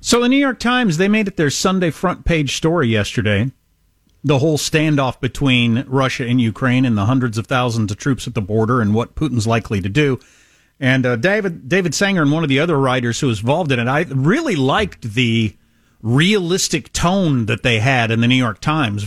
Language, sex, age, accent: English, male, 40-59, American